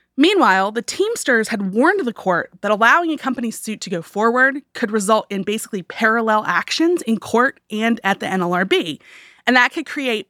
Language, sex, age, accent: English, female, 30-49, American